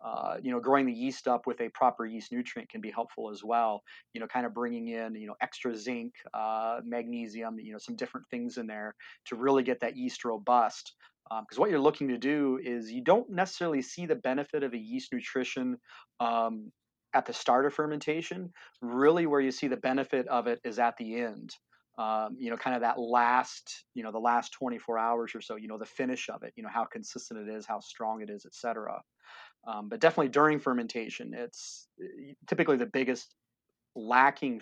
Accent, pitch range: American, 115-135 Hz